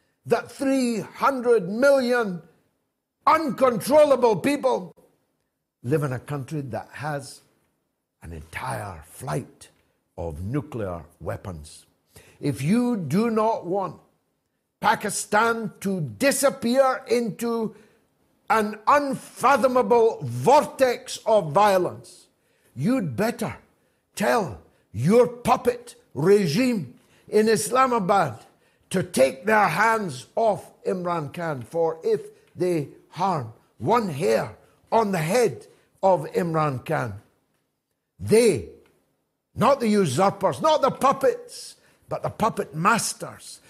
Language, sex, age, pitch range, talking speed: English, male, 60-79, 145-240 Hz, 95 wpm